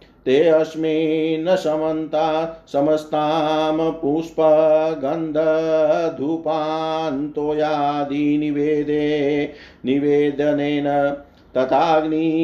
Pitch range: 145-160 Hz